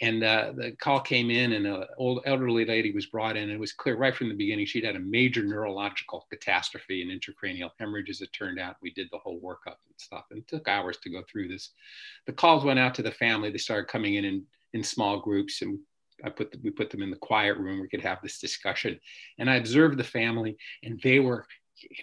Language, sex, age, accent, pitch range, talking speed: English, male, 50-69, American, 100-145 Hz, 250 wpm